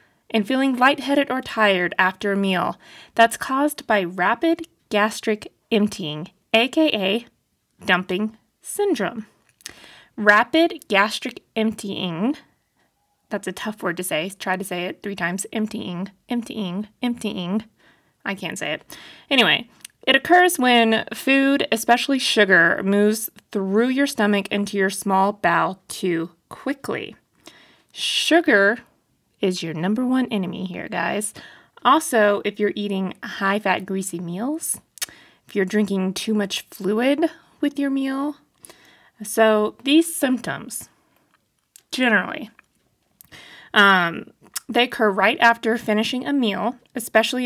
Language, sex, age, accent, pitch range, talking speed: English, female, 20-39, American, 200-260 Hz, 120 wpm